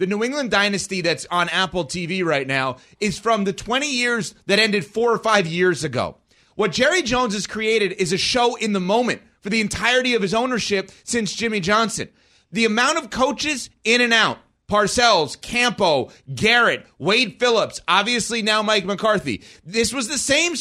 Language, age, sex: English, 30-49, male